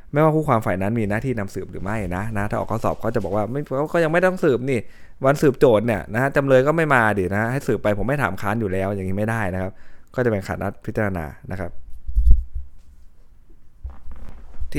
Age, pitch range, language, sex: 20-39, 95-115 Hz, Thai, male